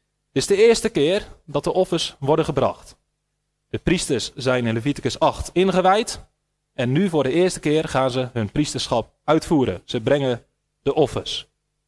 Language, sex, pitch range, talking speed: Dutch, male, 125-180 Hz, 160 wpm